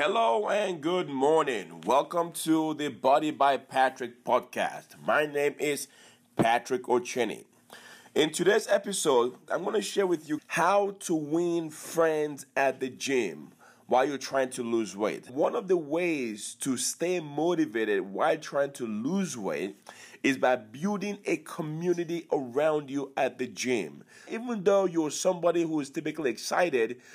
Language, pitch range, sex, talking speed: English, 130-185 Hz, male, 150 wpm